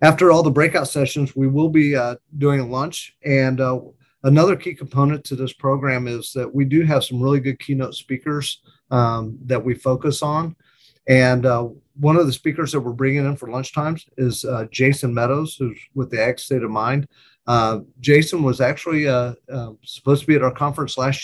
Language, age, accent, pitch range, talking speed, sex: English, 40-59, American, 125-145 Hz, 200 wpm, male